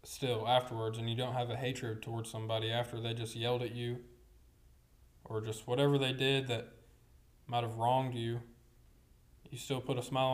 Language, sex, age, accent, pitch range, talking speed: English, male, 20-39, American, 110-140 Hz, 180 wpm